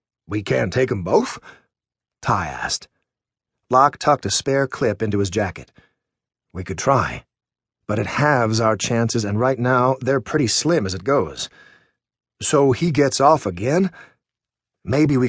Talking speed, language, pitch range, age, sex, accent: 155 wpm, English, 105-135 Hz, 40-59, male, American